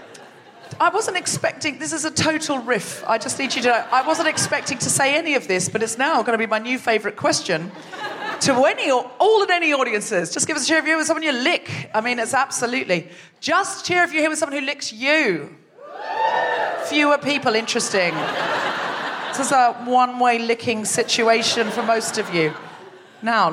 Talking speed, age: 200 wpm, 40-59